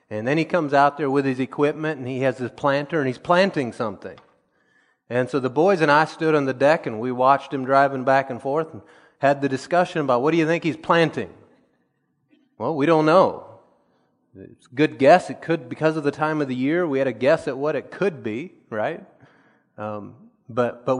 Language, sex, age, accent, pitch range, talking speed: English, male, 30-49, American, 125-165 Hz, 220 wpm